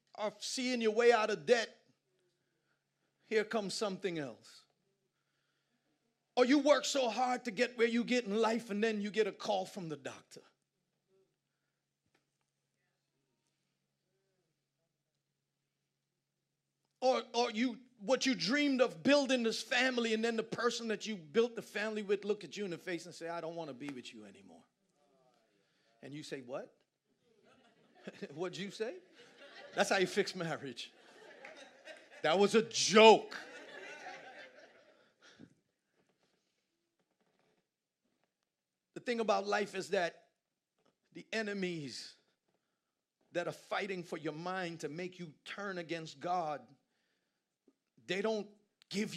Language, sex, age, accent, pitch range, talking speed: English, male, 40-59, American, 175-230 Hz, 130 wpm